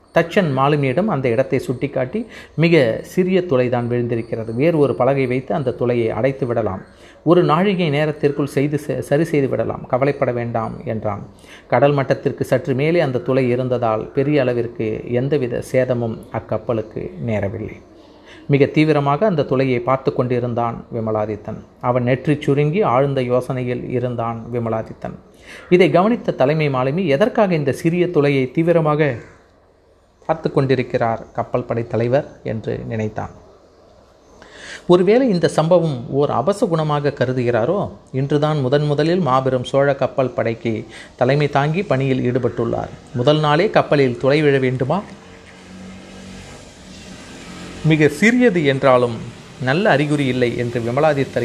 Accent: native